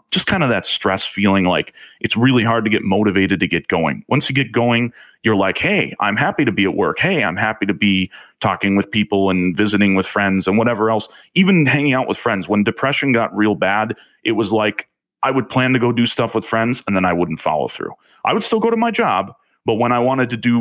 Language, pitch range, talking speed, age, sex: English, 95-120 Hz, 250 wpm, 30-49, male